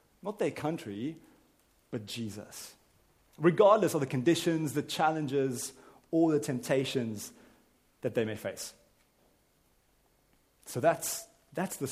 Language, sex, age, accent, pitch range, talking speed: English, male, 30-49, British, 125-175 Hz, 110 wpm